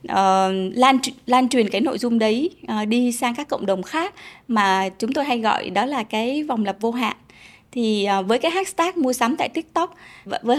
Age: 20-39